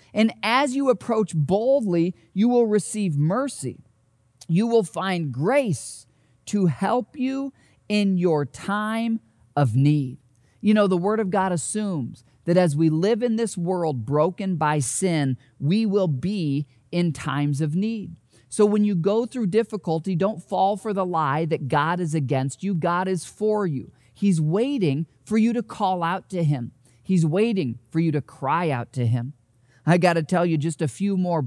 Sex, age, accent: male, 40-59, American